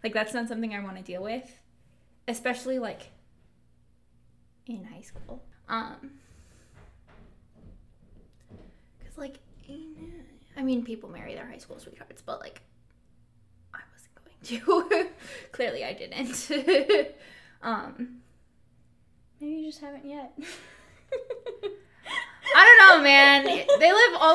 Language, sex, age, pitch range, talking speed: English, female, 10-29, 235-325 Hz, 120 wpm